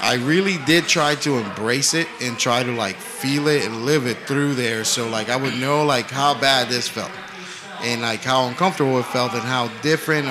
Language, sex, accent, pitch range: English, male, American, 110-140 Hz